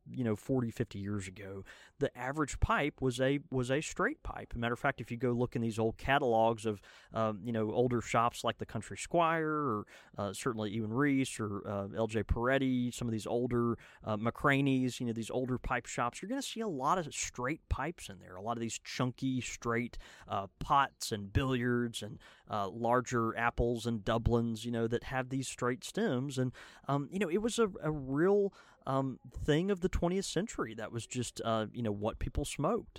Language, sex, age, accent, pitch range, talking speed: English, male, 20-39, American, 110-135 Hz, 215 wpm